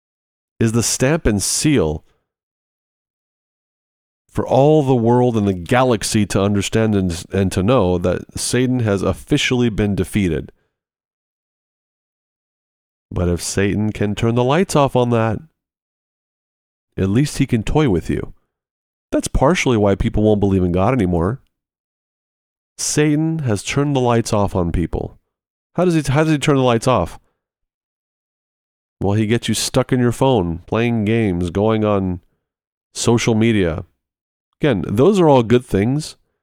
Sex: male